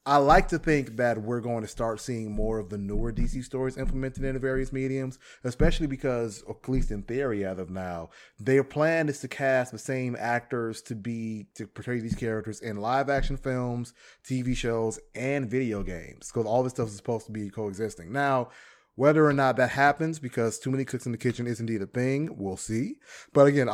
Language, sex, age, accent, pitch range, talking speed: English, male, 30-49, American, 110-135 Hz, 205 wpm